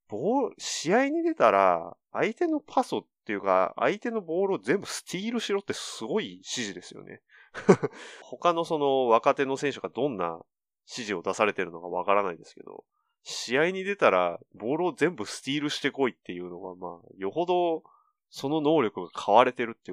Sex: male